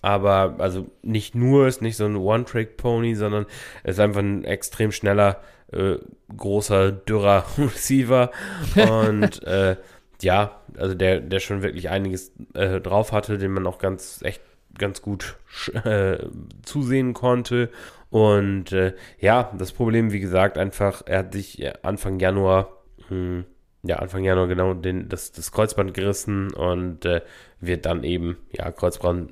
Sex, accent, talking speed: male, German, 150 wpm